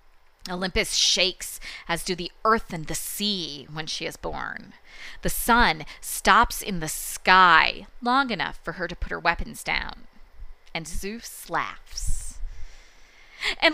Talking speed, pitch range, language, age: 140 wpm, 165-220 Hz, English, 20-39